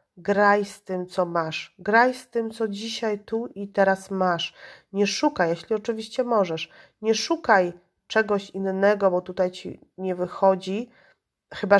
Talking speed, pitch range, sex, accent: 145 wpm, 185-225 Hz, female, native